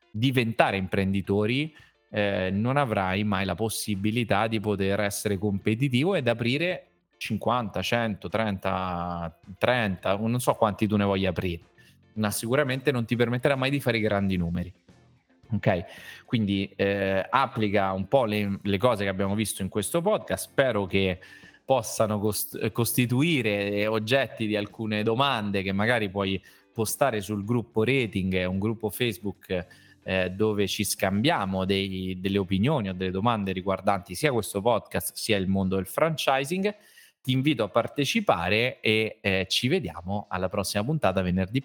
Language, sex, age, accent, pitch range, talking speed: Italian, male, 20-39, native, 95-120 Hz, 140 wpm